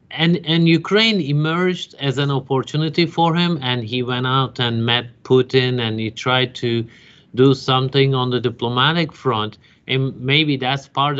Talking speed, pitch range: 160 wpm, 115-145 Hz